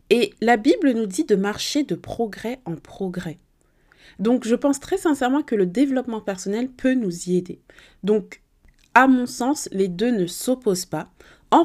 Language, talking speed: French, 175 wpm